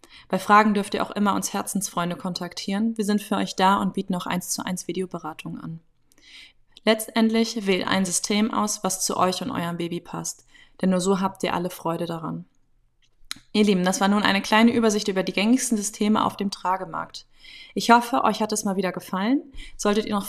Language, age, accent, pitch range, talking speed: German, 20-39, German, 175-220 Hz, 200 wpm